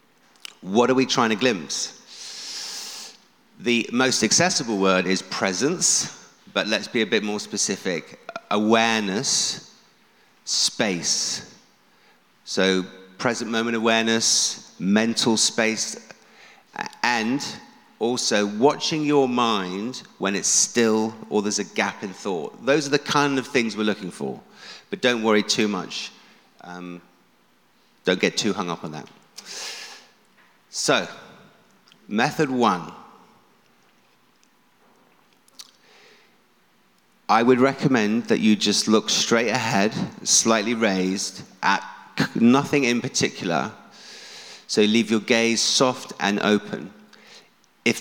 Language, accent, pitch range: English, British, 105-130 Hz